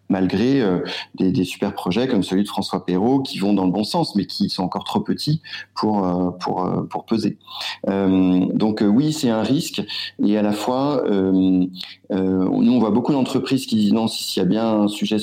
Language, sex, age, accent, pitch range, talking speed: French, male, 40-59, French, 95-115 Hz, 215 wpm